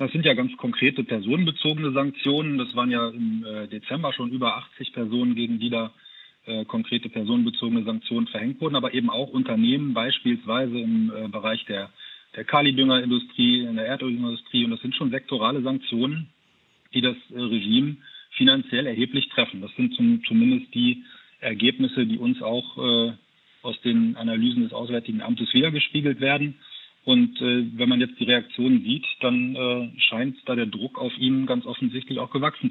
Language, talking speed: German, 155 wpm